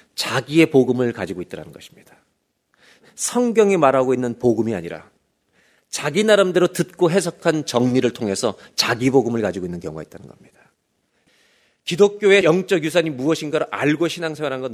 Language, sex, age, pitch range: Korean, male, 40-59, 130-205 Hz